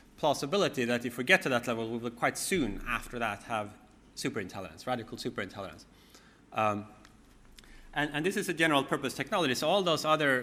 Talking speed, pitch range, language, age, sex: 175 wpm, 115-140 Hz, English, 30-49, male